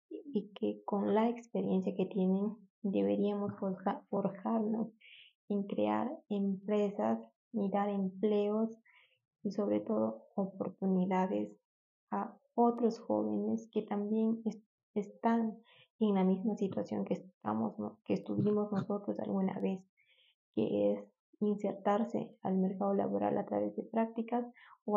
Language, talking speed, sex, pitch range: Spanish, 120 wpm, female, 185-215 Hz